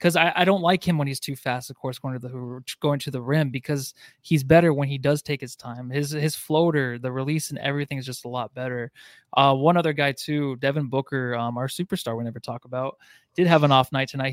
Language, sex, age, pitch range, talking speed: English, male, 20-39, 130-160 Hz, 250 wpm